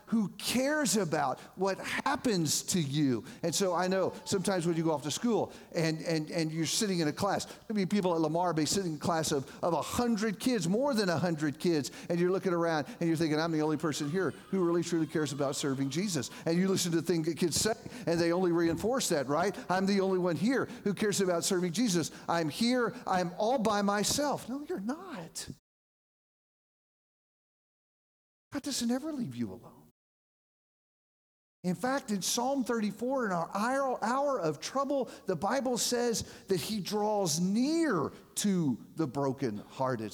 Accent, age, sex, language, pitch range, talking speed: American, 40-59, male, English, 140-205 Hz, 185 wpm